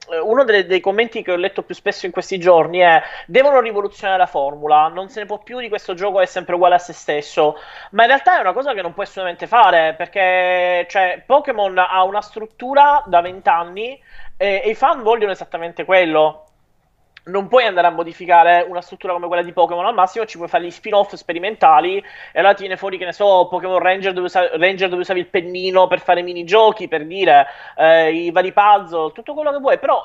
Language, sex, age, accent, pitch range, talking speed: Italian, male, 30-49, native, 175-225 Hz, 215 wpm